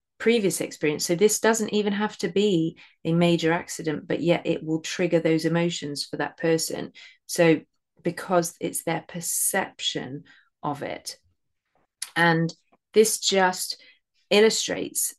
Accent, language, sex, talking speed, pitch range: British, English, female, 130 wpm, 160-195 Hz